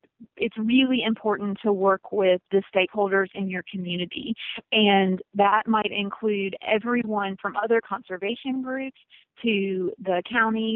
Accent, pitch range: American, 200-245 Hz